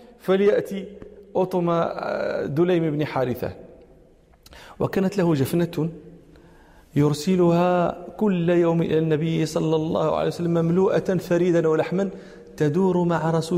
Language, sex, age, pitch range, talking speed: Arabic, male, 40-59, 150-180 Hz, 100 wpm